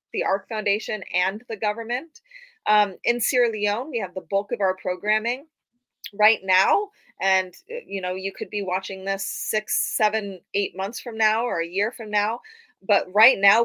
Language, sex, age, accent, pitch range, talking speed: English, female, 30-49, American, 190-250 Hz, 180 wpm